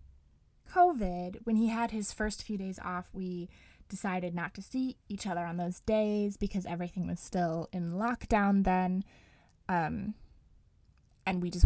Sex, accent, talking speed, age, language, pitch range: female, American, 155 wpm, 20-39, English, 180-220 Hz